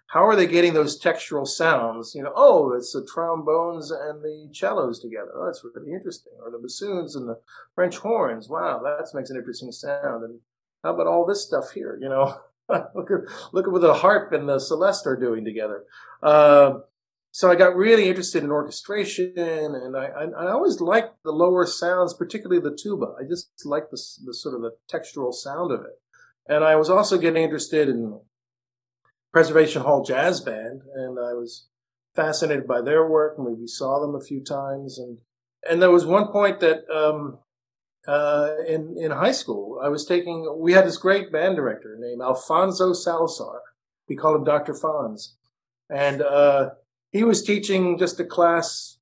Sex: male